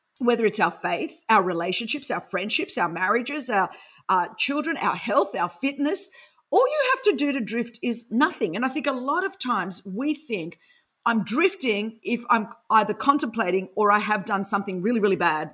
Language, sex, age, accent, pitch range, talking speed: English, female, 40-59, Australian, 190-235 Hz, 190 wpm